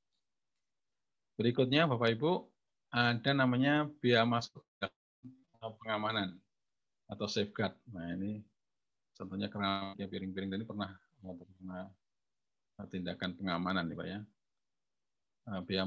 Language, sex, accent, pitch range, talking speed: Indonesian, male, native, 95-120 Hz, 95 wpm